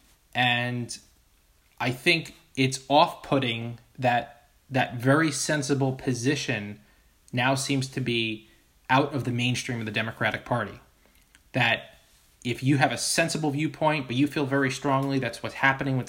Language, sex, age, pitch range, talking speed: English, male, 20-39, 120-140 Hz, 140 wpm